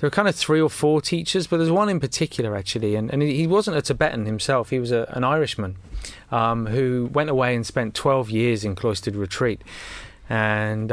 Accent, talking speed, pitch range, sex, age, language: British, 210 wpm, 110-140 Hz, male, 20-39, English